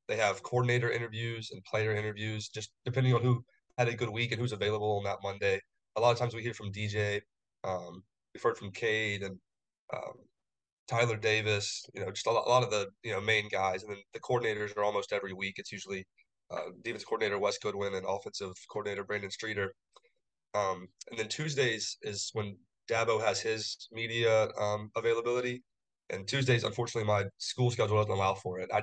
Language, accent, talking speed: English, American, 190 wpm